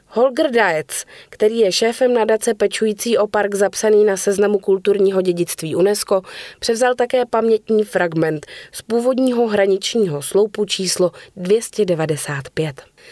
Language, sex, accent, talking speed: Czech, female, native, 115 wpm